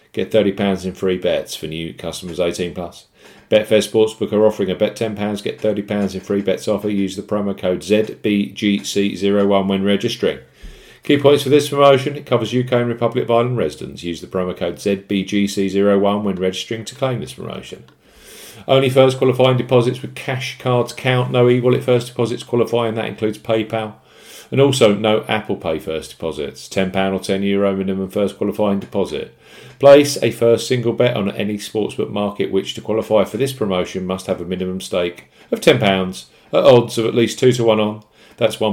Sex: male